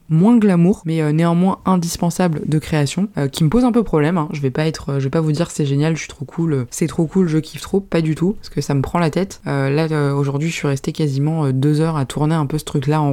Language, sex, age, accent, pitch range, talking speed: French, female, 20-39, French, 135-165 Hz, 290 wpm